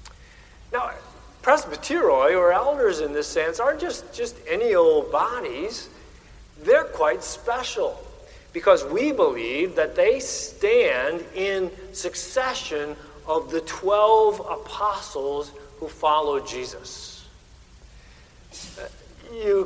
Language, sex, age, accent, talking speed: English, male, 50-69, American, 95 wpm